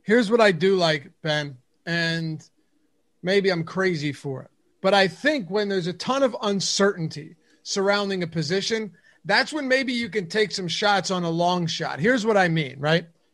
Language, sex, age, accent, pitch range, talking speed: English, male, 30-49, American, 175-225 Hz, 185 wpm